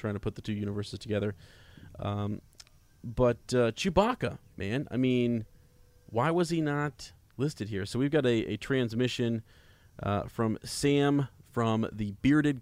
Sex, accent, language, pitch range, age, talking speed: male, American, English, 105-125 Hz, 30-49, 150 wpm